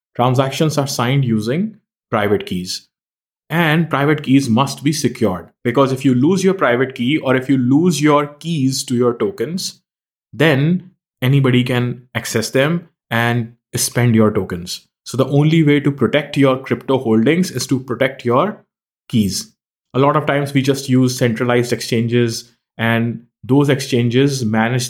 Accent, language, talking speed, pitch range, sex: Indian, English, 155 wpm, 120-140 Hz, male